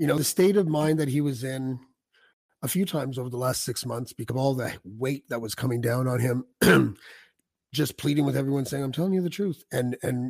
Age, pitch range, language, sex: 30-49, 125-155 Hz, English, male